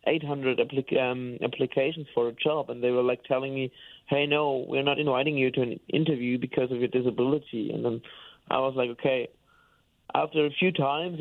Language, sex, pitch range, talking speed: English, male, 130-145 Hz, 195 wpm